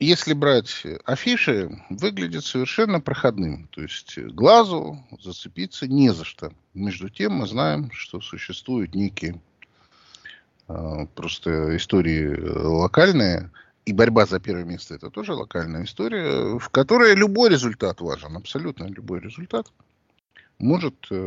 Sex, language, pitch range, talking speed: male, Russian, 90-150 Hz, 120 wpm